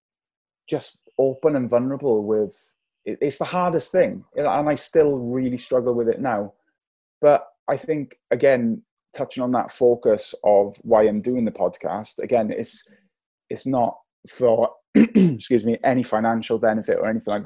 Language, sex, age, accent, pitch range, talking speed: English, male, 20-39, British, 110-130 Hz, 150 wpm